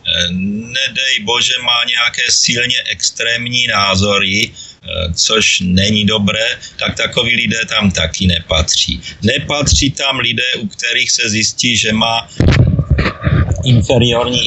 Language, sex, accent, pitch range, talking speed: Czech, male, native, 90-125 Hz, 110 wpm